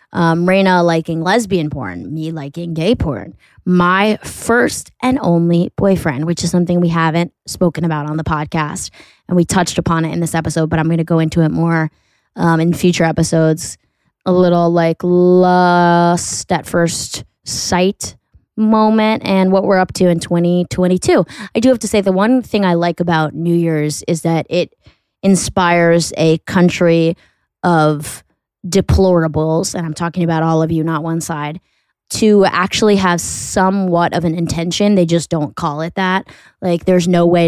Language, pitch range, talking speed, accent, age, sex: English, 160-185 Hz, 170 wpm, American, 20-39, female